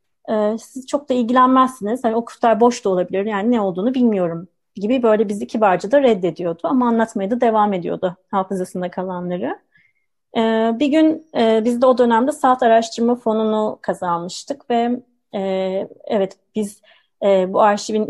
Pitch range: 200-255 Hz